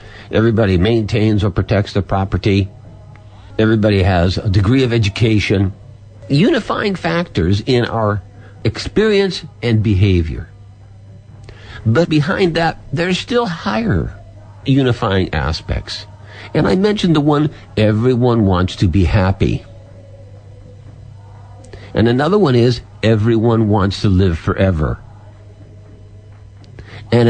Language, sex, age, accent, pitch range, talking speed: English, male, 60-79, American, 95-120 Hz, 105 wpm